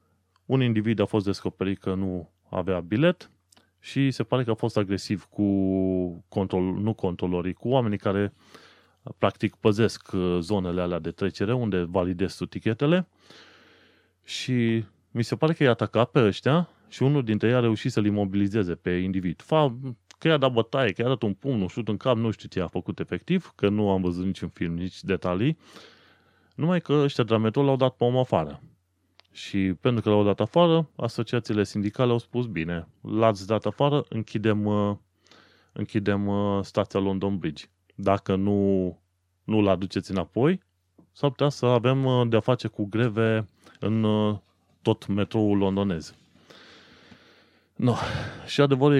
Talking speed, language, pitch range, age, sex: 160 wpm, Romanian, 95-120 Hz, 20-39, male